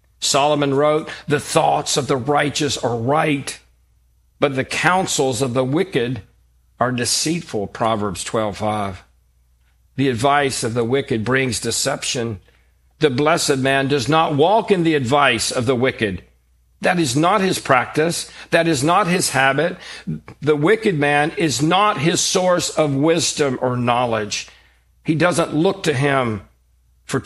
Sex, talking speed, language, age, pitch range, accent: male, 145 wpm, English, 50-69, 105-145 Hz, American